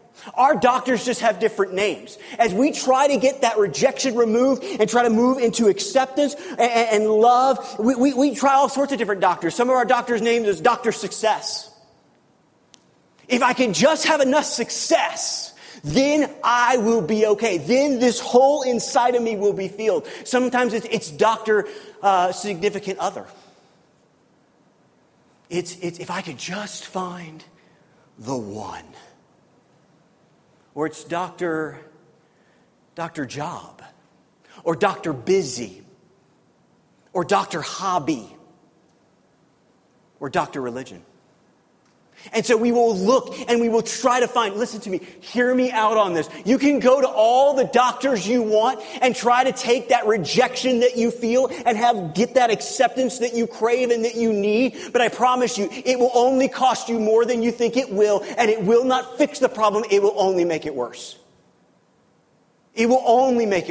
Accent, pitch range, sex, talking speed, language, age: American, 200-255 Hz, male, 160 wpm, English, 30-49